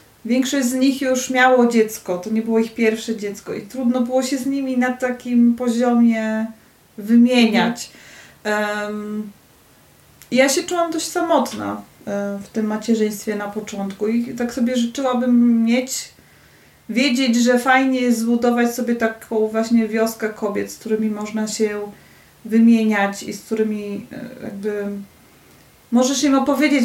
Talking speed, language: 130 wpm, Polish